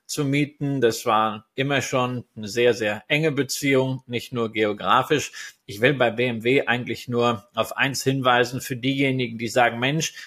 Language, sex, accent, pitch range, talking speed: German, male, German, 125-170 Hz, 165 wpm